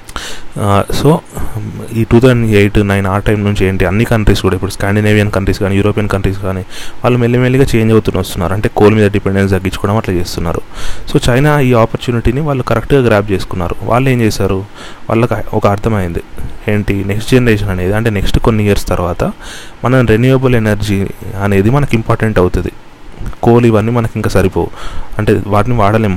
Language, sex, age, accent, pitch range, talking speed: Telugu, male, 30-49, native, 100-120 Hz, 160 wpm